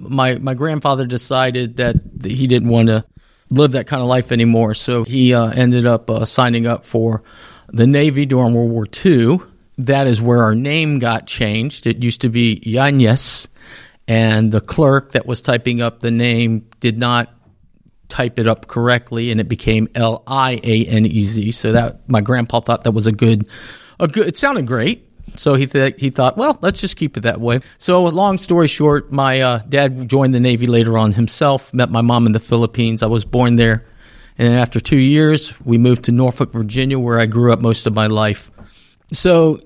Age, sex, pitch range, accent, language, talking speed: 40-59, male, 115-135 Hz, American, English, 200 wpm